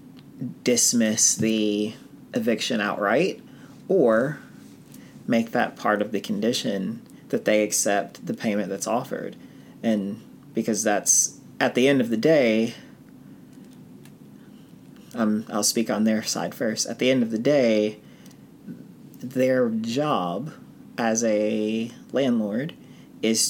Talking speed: 115 wpm